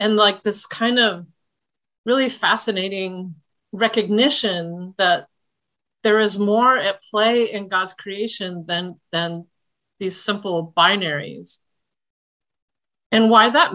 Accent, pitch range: American, 170-215 Hz